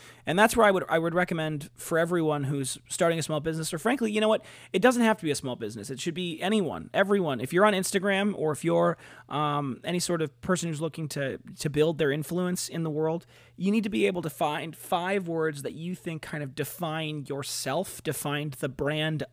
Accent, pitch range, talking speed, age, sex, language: American, 140-180 Hz, 230 wpm, 30-49, male, English